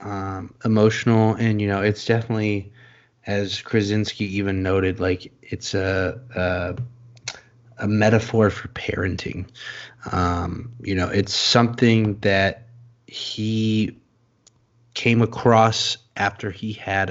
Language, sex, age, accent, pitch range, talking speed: English, male, 20-39, American, 100-120 Hz, 110 wpm